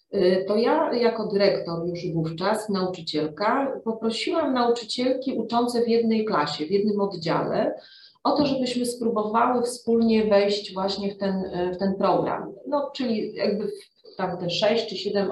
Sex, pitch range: female, 185-235 Hz